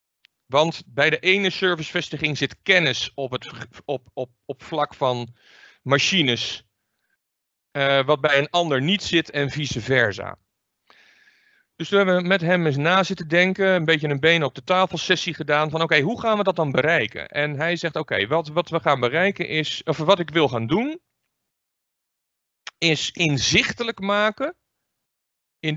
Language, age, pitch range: English, 40-59, 130-185 Hz